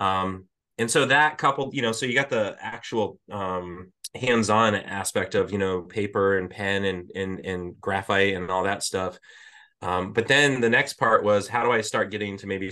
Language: English